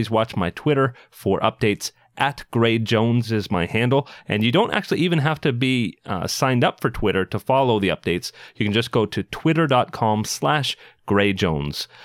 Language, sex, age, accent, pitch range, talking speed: English, male, 40-59, American, 100-135 Hz, 185 wpm